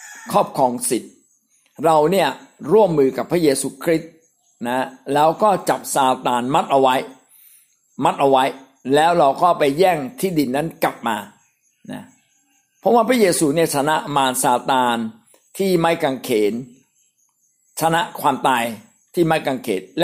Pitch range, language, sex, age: 135-190 Hz, Thai, male, 60-79